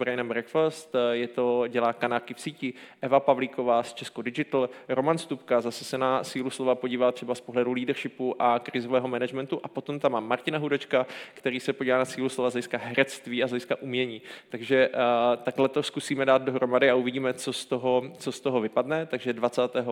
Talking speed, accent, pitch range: 190 wpm, native, 120-135 Hz